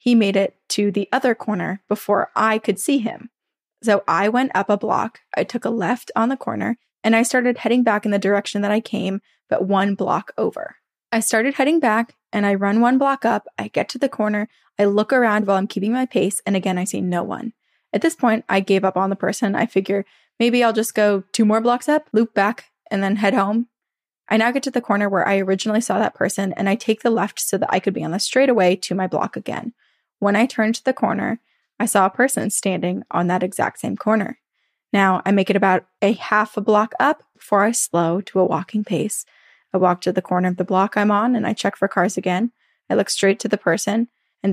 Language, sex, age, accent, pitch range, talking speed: English, female, 20-39, American, 195-235 Hz, 240 wpm